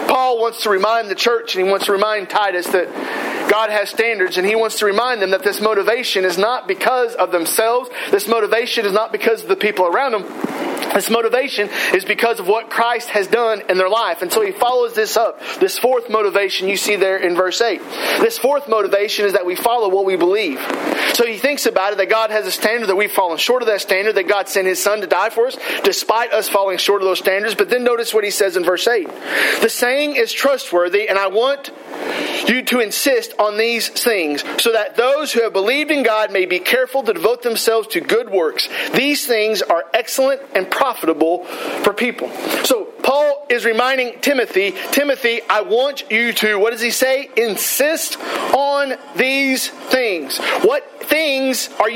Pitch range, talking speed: 205-265 Hz, 205 wpm